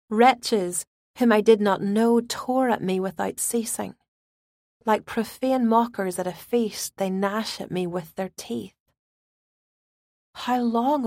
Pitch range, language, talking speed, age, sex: 195-235 Hz, English, 140 wpm, 40-59, female